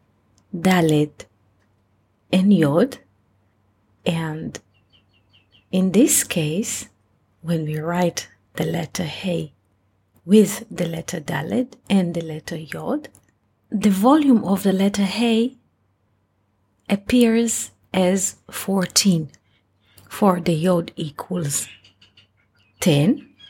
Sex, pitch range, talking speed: female, 135-205 Hz, 90 wpm